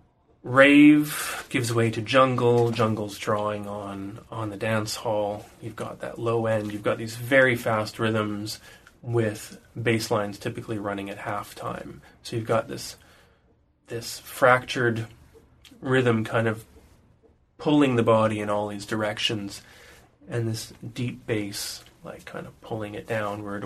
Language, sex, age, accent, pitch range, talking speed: English, male, 20-39, American, 105-120 Hz, 145 wpm